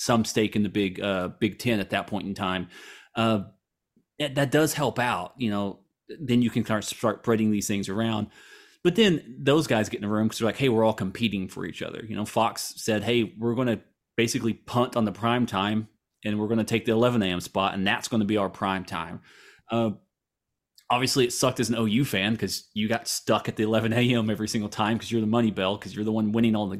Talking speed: 245 wpm